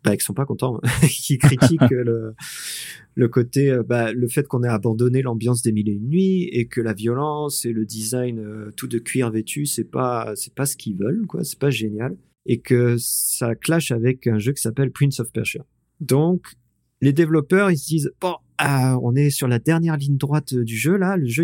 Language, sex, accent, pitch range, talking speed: French, male, French, 120-150 Hz, 215 wpm